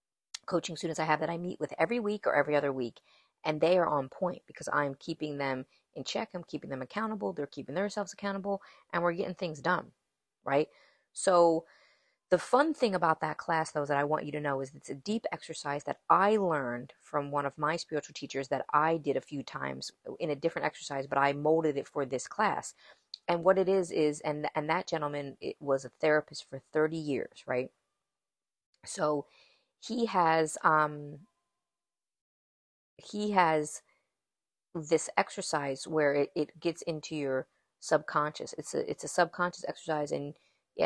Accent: American